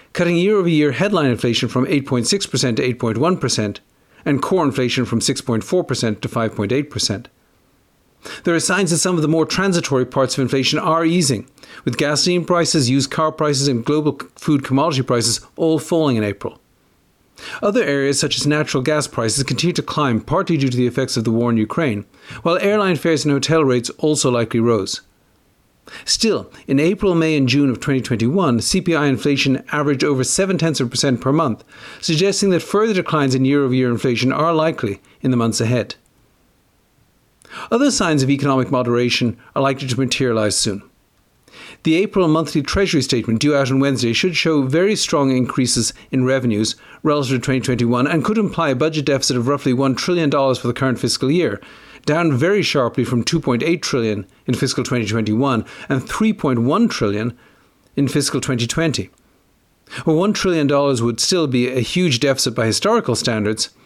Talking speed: 165 wpm